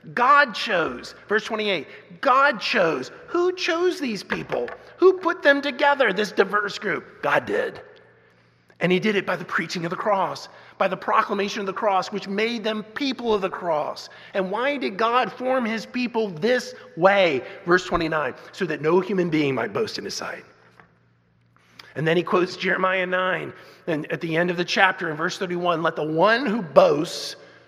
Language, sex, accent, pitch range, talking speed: English, male, American, 175-235 Hz, 180 wpm